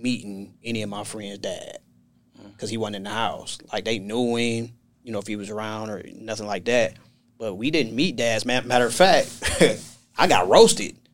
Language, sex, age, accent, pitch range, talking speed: English, male, 30-49, American, 110-125 Hz, 205 wpm